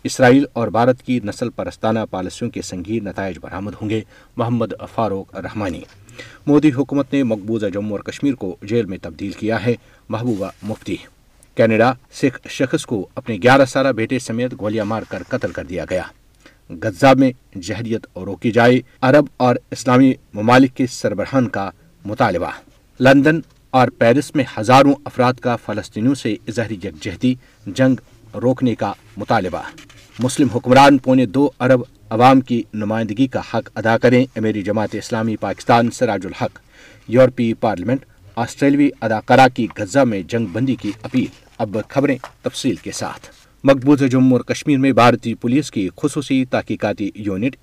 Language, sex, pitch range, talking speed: Urdu, male, 110-130 Hz, 150 wpm